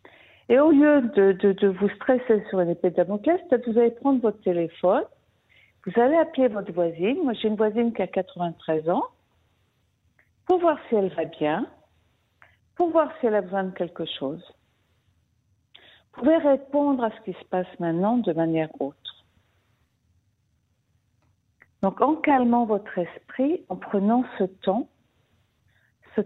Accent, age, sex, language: French, 50-69, female, French